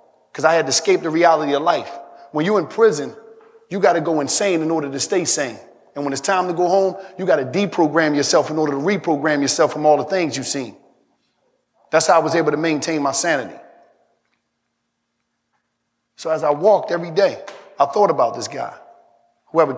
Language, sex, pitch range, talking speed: English, male, 140-190 Hz, 205 wpm